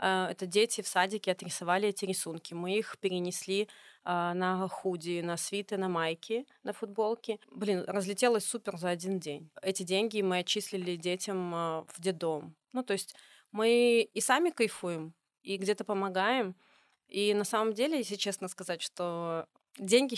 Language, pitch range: Russian, 180-210 Hz